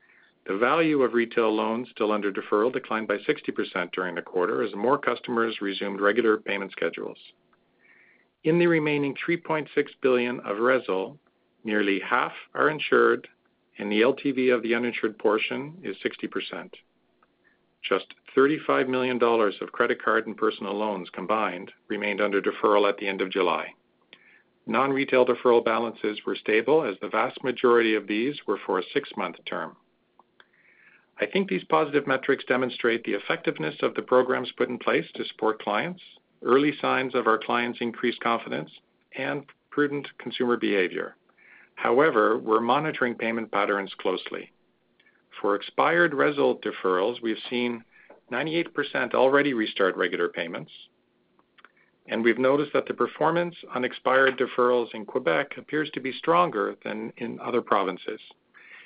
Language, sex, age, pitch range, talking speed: English, male, 50-69, 110-135 Hz, 140 wpm